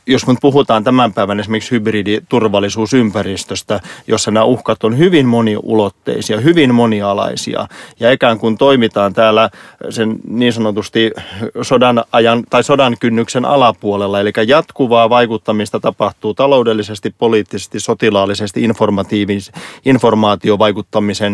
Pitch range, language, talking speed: 105-125 Hz, Finnish, 105 wpm